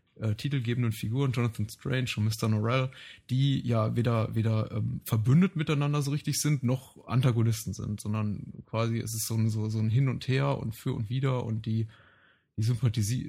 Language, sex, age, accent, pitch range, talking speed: German, male, 30-49, German, 110-130 Hz, 170 wpm